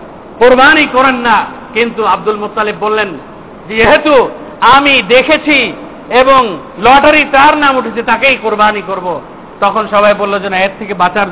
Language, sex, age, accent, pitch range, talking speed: Bengali, male, 50-69, native, 220-275 Hz, 90 wpm